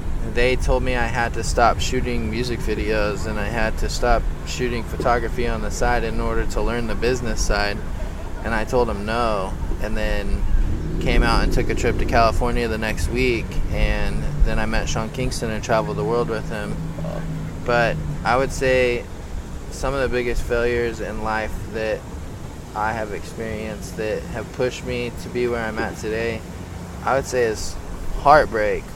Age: 20-39